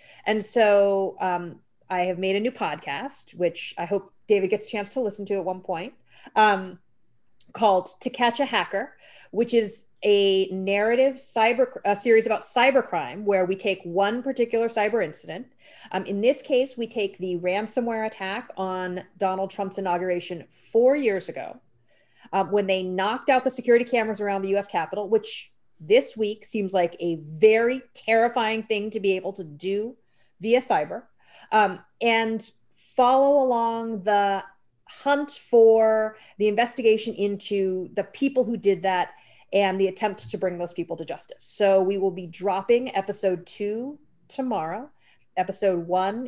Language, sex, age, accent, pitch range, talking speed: English, female, 30-49, American, 190-230 Hz, 160 wpm